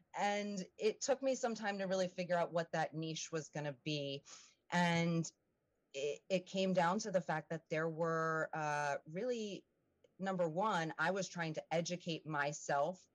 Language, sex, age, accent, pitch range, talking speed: English, female, 30-49, American, 155-185 Hz, 175 wpm